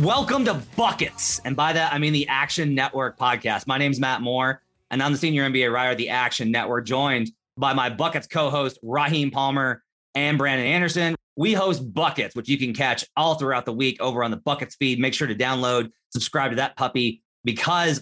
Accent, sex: American, male